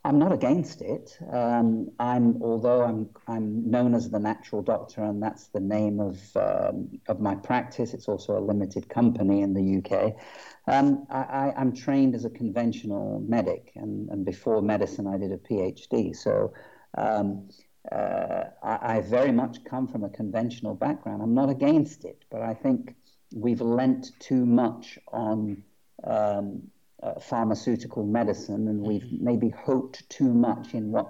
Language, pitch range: English, 105-125 Hz